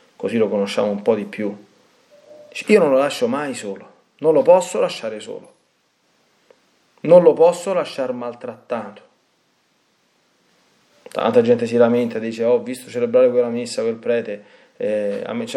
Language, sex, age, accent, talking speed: Italian, male, 30-49, native, 150 wpm